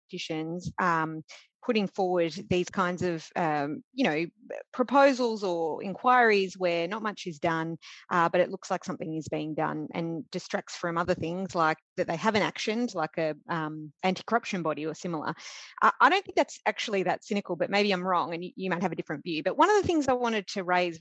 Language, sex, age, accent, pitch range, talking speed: English, female, 30-49, Australian, 170-210 Hz, 205 wpm